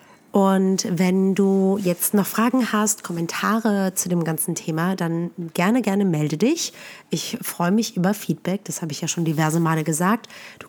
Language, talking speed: German, 175 wpm